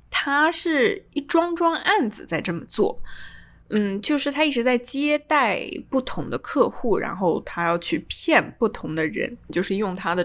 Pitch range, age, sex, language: 190-285 Hz, 10-29, female, Chinese